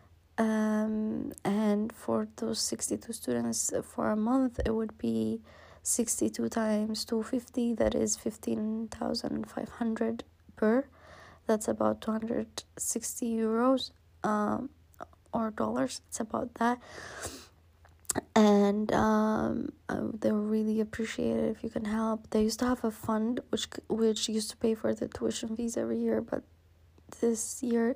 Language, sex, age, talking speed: English, female, 20-39, 125 wpm